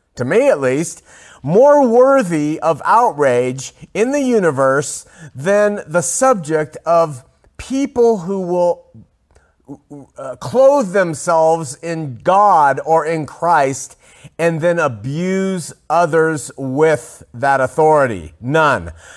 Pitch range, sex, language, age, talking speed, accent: 150-230 Hz, male, English, 40-59, 105 wpm, American